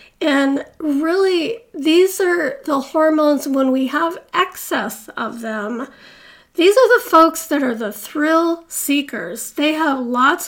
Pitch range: 260-305 Hz